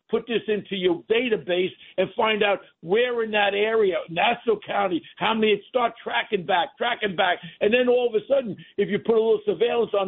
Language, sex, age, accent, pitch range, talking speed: English, male, 60-79, American, 185-235 Hz, 200 wpm